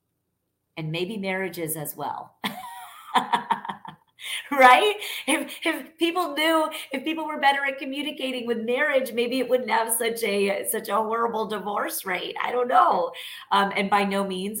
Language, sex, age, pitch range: English, female, 30-49, 185-245 Hz